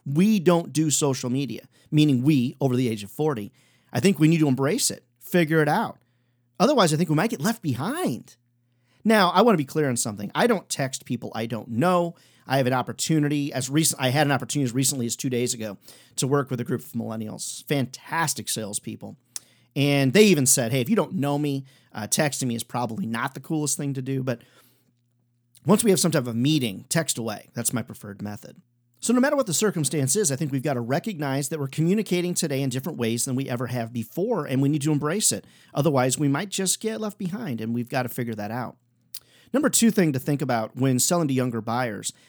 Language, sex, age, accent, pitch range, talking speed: English, male, 40-59, American, 120-155 Hz, 230 wpm